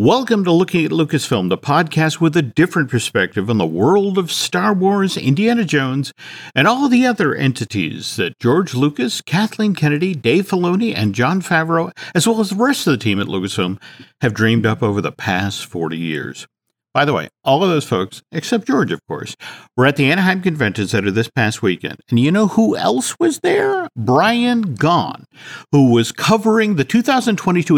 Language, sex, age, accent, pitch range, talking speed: English, male, 50-69, American, 120-180 Hz, 185 wpm